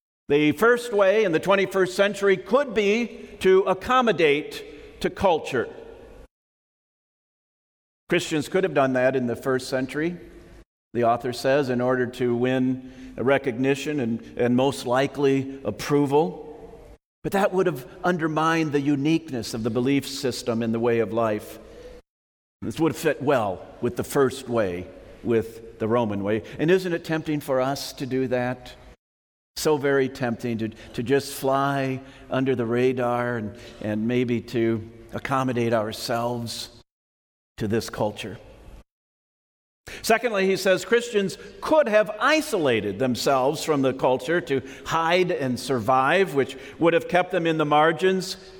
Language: English